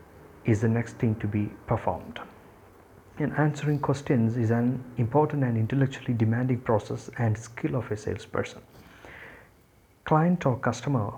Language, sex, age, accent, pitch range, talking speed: English, male, 50-69, Indian, 115-130 Hz, 135 wpm